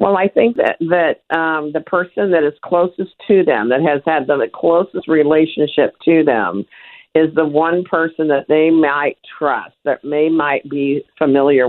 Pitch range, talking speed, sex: 130-160 Hz, 180 wpm, female